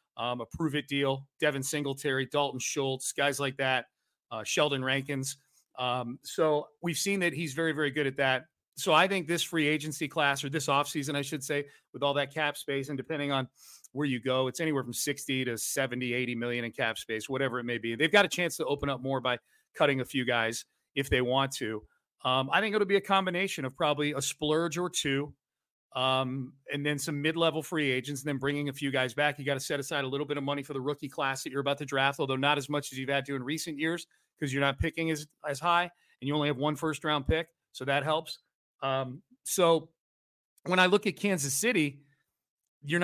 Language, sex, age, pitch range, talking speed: English, male, 40-59, 135-155 Hz, 230 wpm